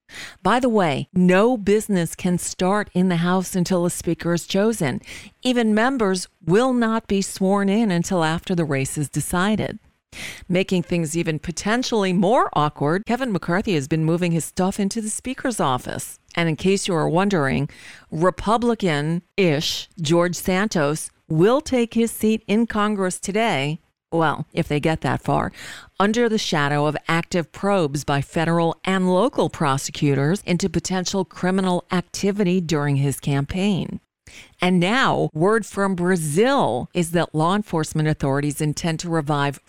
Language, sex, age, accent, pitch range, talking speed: English, female, 40-59, American, 155-200 Hz, 150 wpm